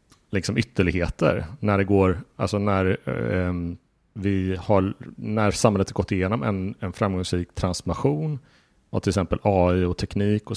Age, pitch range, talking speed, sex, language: 30-49, 90-105 Hz, 150 wpm, male, Swedish